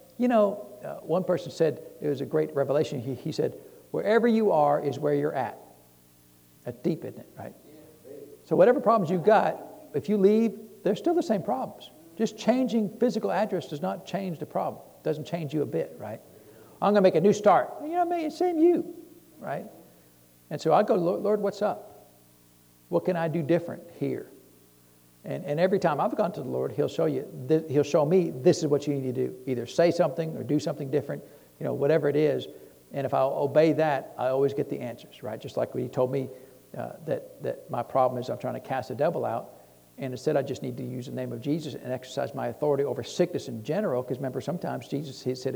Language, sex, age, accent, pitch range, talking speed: English, male, 60-79, American, 125-185 Hz, 225 wpm